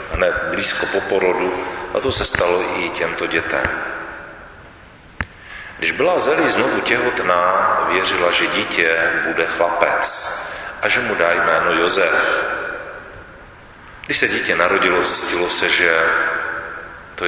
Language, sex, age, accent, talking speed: Czech, male, 40-59, native, 120 wpm